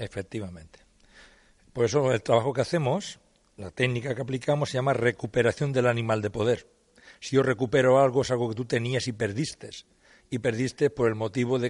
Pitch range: 115-140 Hz